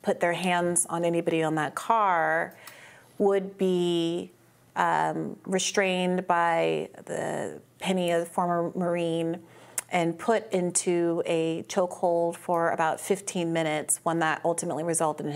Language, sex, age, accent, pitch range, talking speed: English, female, 30-49, American, 165-185 Hz, 130 wpm